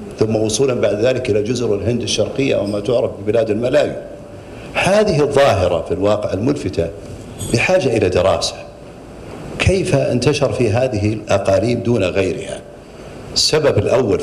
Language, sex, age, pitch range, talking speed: Arabic, male, 50-69, 105-135 Hz, 120 wpm